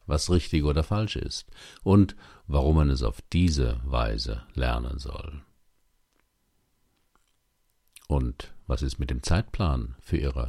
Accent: German